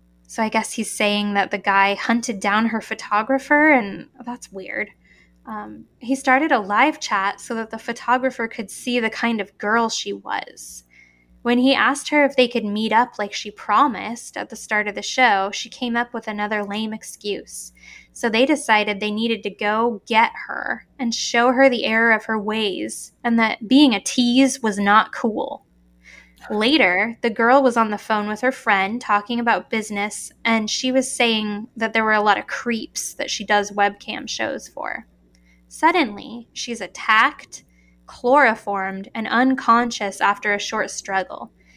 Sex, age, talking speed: female, 10-29, 175 wpm